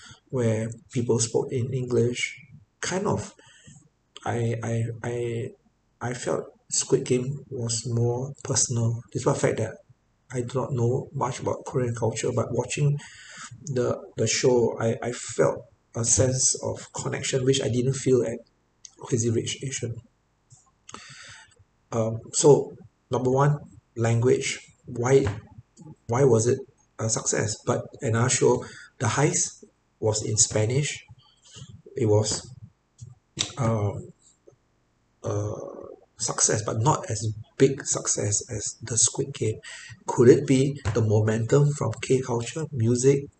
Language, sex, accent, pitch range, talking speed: English, male, Malaysian, 115-130 Hz, 125 wpm